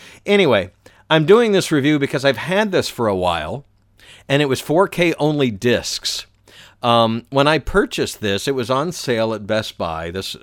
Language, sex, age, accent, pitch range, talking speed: English, male, 50-69, American, 105-150 Hz, 175 wpm